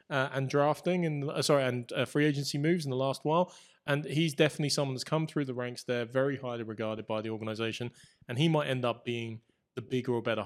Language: English